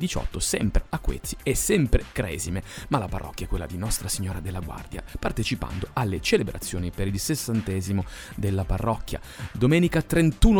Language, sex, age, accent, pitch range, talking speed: Italian, male, 30-49, native, 95-125 Hz, 155 wpm